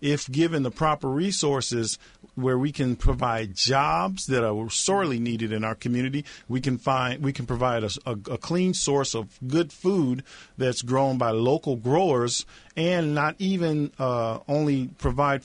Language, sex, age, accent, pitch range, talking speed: English, male, 50-69, American, 120-150 Hz, 165 wpm